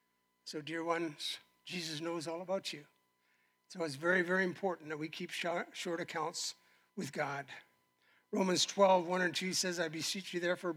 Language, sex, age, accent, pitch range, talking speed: English, male, 60-79, American, 150-180 Hz, 160 wpm